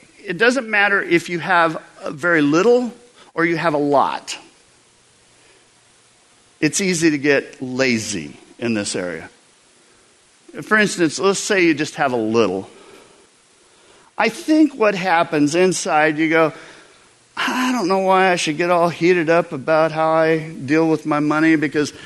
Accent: American